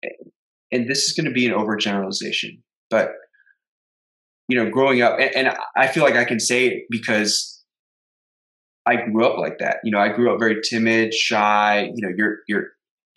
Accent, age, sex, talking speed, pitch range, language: American, 20-39, male, 180 wpm, 100-120 Hz, English